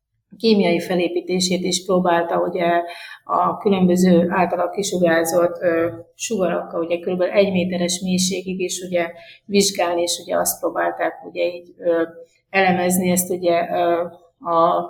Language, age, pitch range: Hungarian, 30-49, 175-190 Hz